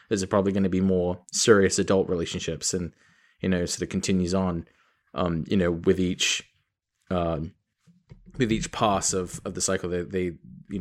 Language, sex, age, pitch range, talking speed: English, male, 20-39, 95-115 Hz, 185 wpm